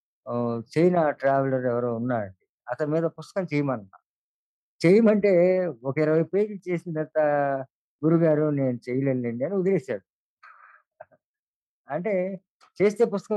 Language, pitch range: Telugu, 125-175 Hz